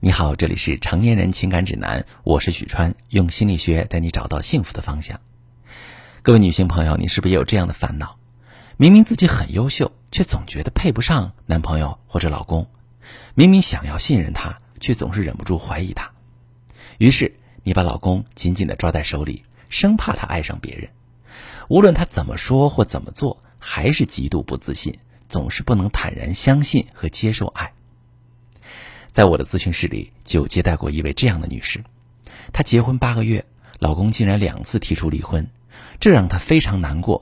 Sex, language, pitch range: male, Chinese, 85-120 Hz